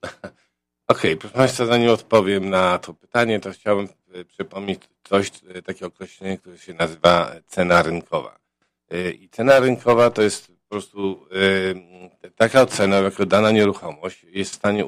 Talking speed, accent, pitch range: 140 wpm, native, 90-110 Hz